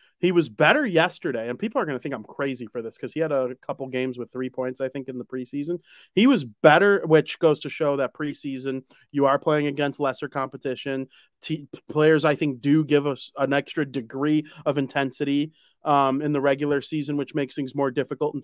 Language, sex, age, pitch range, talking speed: English, male, 30-49, 135-155 Hz, 220 wpm